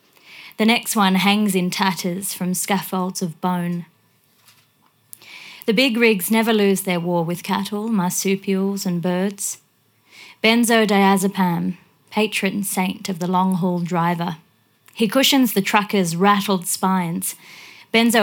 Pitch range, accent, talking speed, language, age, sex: 180-205 Hz, Australian, 120 wpm, English, 30-49, female